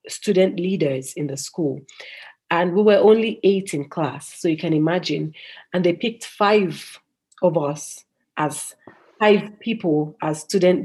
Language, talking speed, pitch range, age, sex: English, 150 wpm, 165-230 Hz, 40-59, female